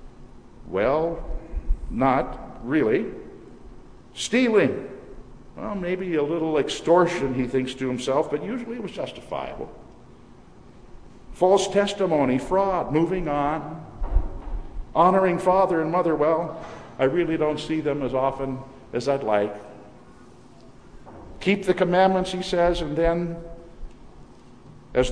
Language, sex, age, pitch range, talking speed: English, male, 60-79, 130-170 Hz, 110 wpm